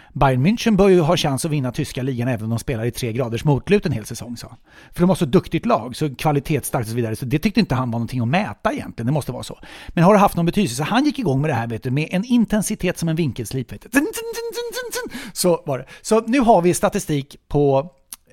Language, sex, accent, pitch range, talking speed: English, male, Swedish, 125-190 Hz, 255 wpm